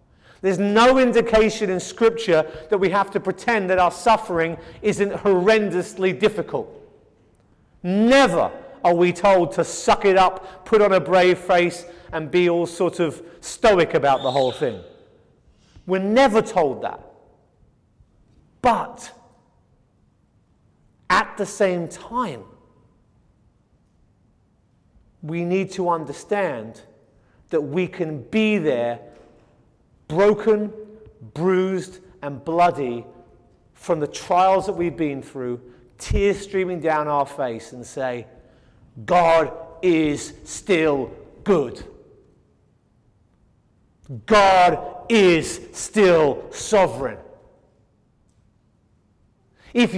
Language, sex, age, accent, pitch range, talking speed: English, male, 30-49, British, 150-210 Hz, 100 wpm